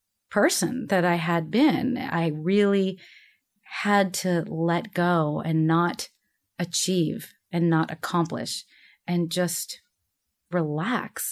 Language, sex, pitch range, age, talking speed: English, female, 175-235 Hz, 30-49, 105 wpm